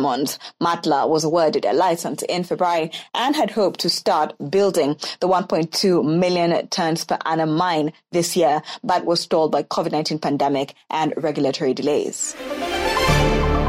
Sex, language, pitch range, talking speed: female, English, 155-210 Hz, 140 wpm